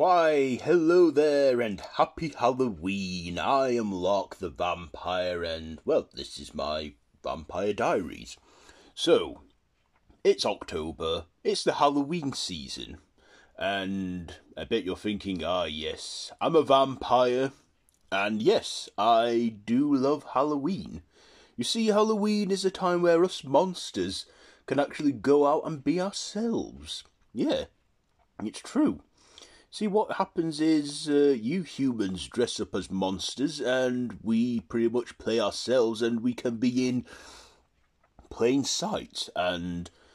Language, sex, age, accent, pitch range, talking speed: English, male, 30-49, British, 110-160 Hz, 125 wpm